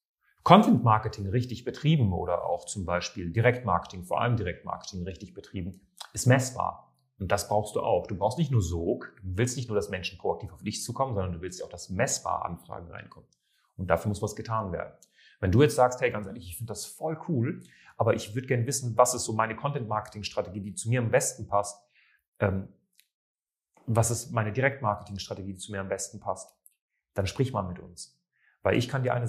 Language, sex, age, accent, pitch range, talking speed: German, male, 30-49, German, 100-120 Hz, 200 wpm